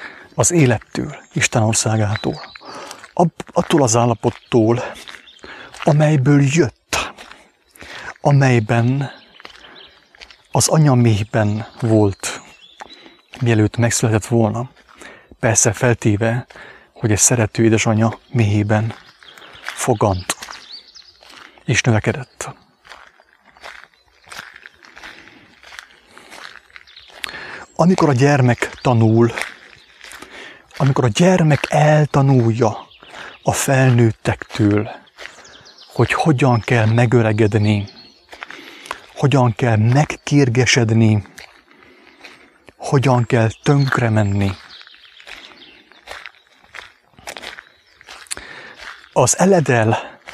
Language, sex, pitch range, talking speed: English, male, 110-135 Hz, 60 wpm